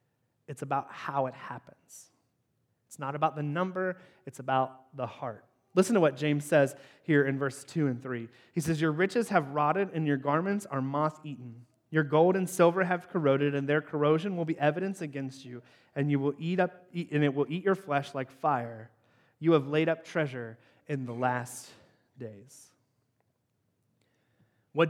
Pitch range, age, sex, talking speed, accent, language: 130-170 Hz, 30-49, male, 180 wpm, American, English